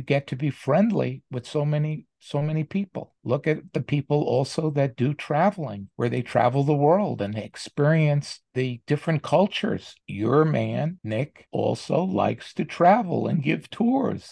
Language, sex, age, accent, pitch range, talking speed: English, male, 50-69, American, 140-190 Hz, 160 wpm